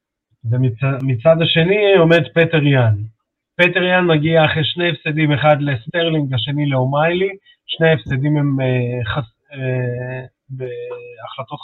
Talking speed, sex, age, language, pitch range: 115 wpm, male, 30-49, Hebrew, 135-175 Hz